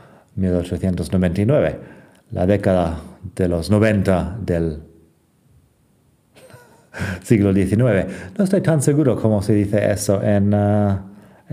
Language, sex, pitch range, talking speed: Spanish, male, 90-115 Hz, 100 wpm